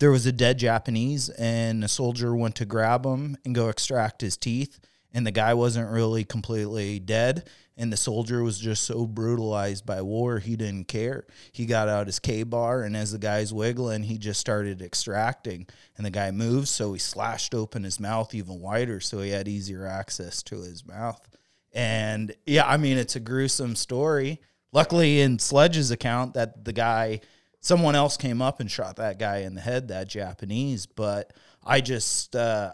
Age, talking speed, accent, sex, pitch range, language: 30-49, 185 wpm, American, male, 105-120 Hz, English